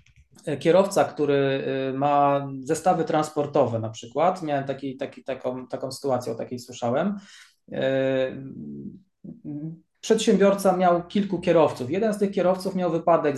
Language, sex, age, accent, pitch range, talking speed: Polish, male, 20-39, native, 135-165 Hz, 110 wpm